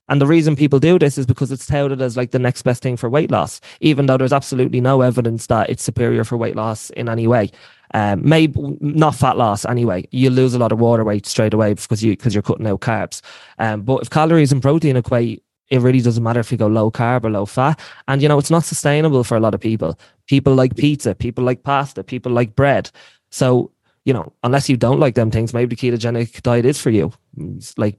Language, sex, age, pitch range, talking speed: English, male, 20-39, 115-145 Hz, 240 wpm